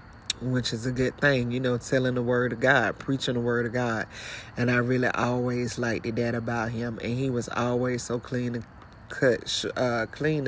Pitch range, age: 120-135 Hz, 30-49